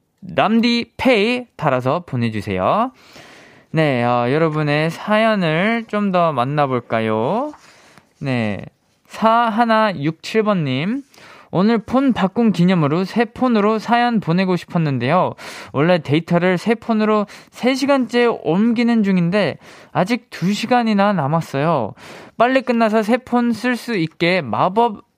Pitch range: 130-210 Hz